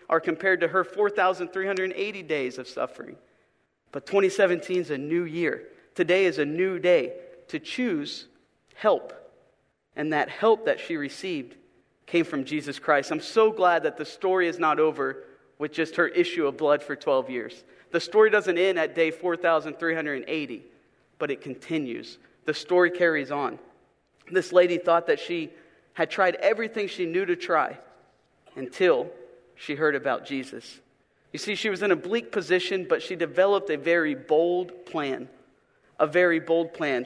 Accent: American